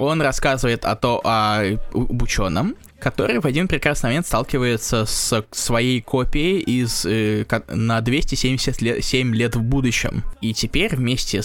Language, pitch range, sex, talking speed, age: Russian, 110-135 Hz, male, 140 wpm, 20-39